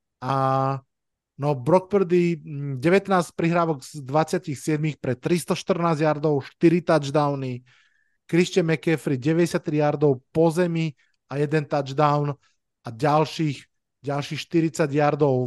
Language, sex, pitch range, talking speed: Slovak, male, 140-165 Hz, 105 wpm